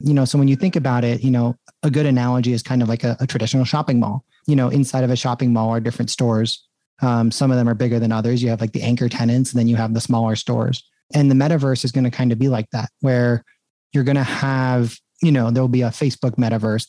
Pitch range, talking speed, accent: 120-135 Hz, 270 wpm, American